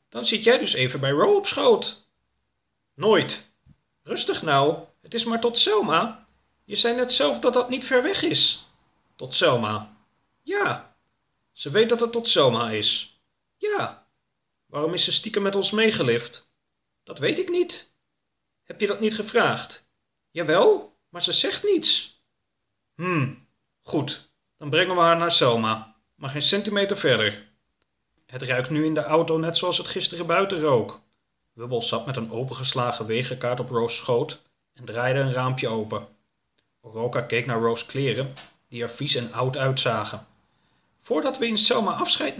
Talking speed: 160 wpm